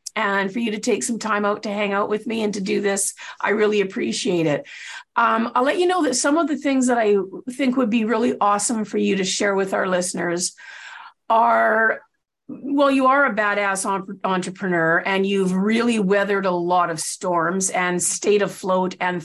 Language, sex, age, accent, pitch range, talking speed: English, female, 50-69, American, 195-265 Hz, 200 wpm